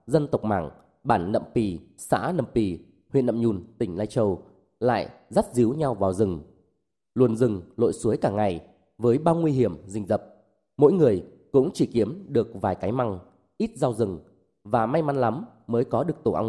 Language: Vietnamese